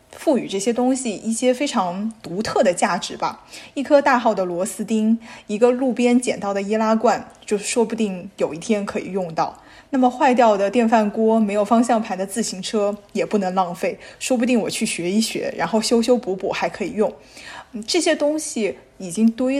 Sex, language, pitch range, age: female, Chinese, 195-240 Hz, 10-29